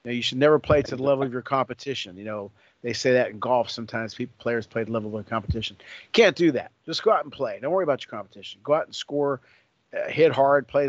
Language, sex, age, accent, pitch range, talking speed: English, male, 50-69, American, 110-135 Hz, 270 wpm